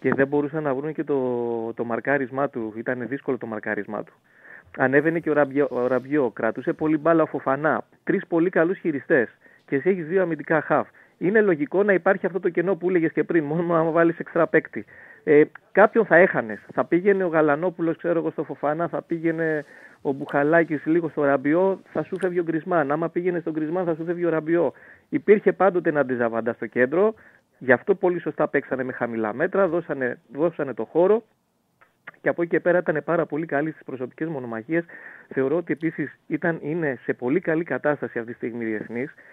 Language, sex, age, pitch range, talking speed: Greek, male, 30-49, 130-170 Hz, 185 wpm